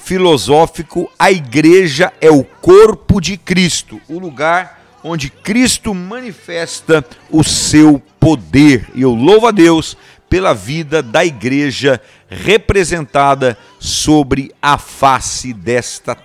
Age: 50-69